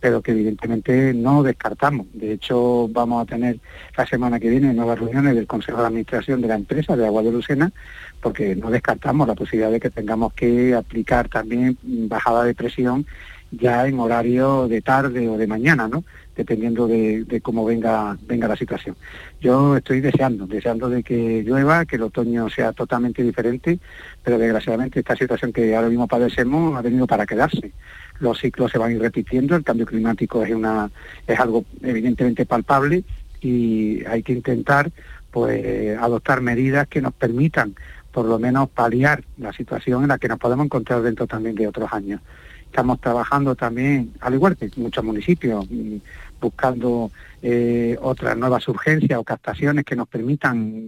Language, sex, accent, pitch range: Spanish, male, Spanish, 115-130 Hz